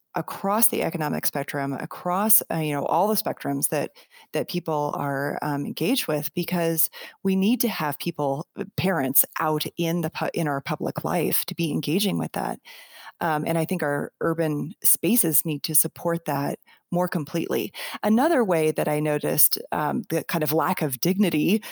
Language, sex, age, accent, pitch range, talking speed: English, female, 30-49, American, 150-205 Hz, 170 wpm